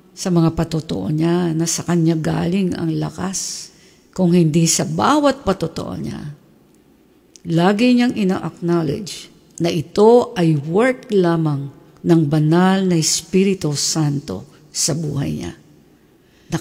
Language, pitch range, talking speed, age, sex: English, 165-210 Hz, 120 wpm, 50-69, female